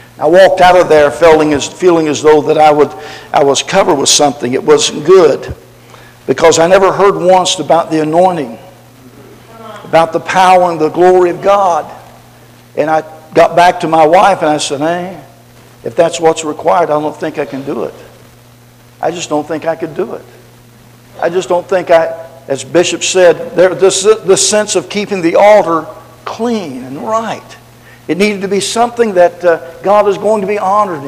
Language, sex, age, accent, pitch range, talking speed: English, male, 60-79, American, 155-200 Hz, 190 wpm